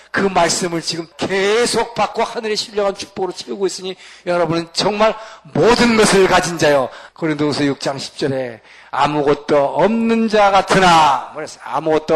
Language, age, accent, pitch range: Korean, 40-59, native, 165-210 Hz